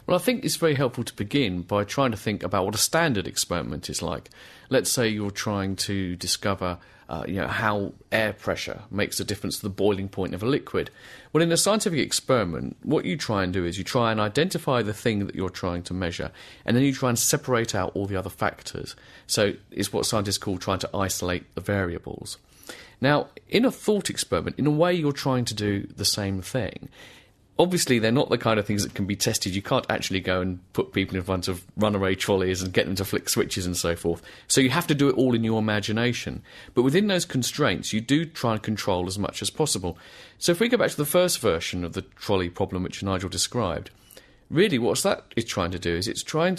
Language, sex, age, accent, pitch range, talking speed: English, male, 30-49, British, 95-130 Hz, 230 wpm